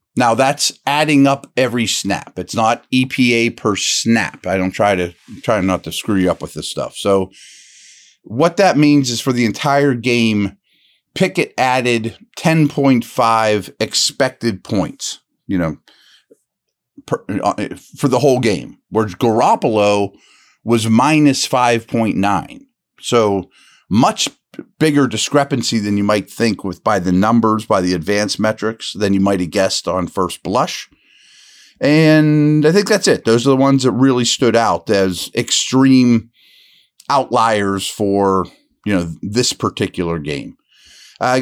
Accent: American